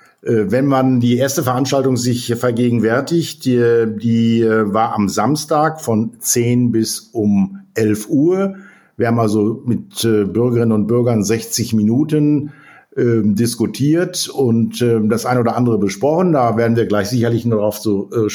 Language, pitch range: German, 110-130 Hz